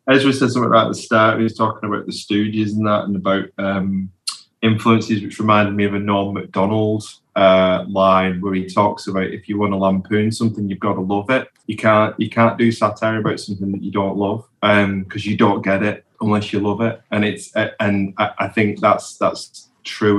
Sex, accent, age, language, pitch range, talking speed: male, British, 20-39, English, 95-110 Hz, 215 wpm